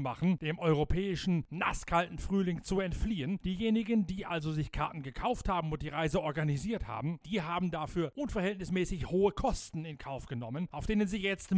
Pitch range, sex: 140-195 Hz, male